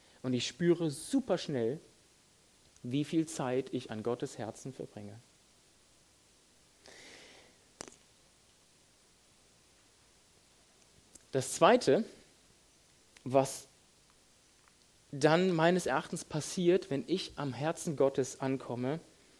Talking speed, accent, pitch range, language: 80 wpm, German, 135-185 Hz, German